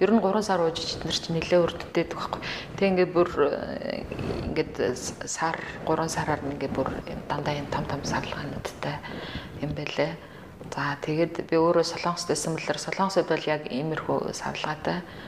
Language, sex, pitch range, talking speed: English, female, 150-170 Hz, 130 wpm